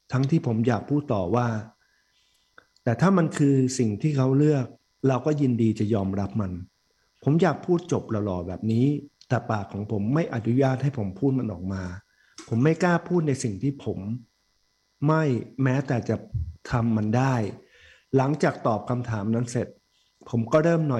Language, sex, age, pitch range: Thai, male, 60-79, 110-145 Hz